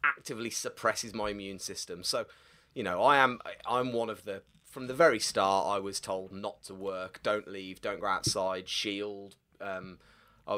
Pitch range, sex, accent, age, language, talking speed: 105-165 Hz, male, British, 30-49, English, 185 wpm